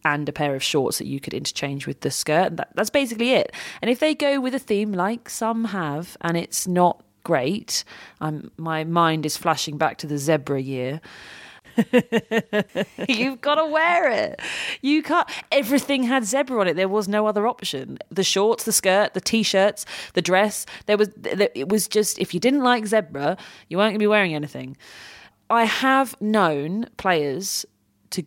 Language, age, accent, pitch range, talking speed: English, 30-49, British, 155-210 Hz, 185 wpm